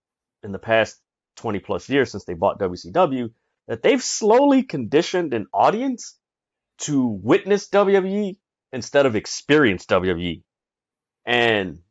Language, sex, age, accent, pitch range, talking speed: English, male, 30-49, American, 115-165 Hz, 120 wpm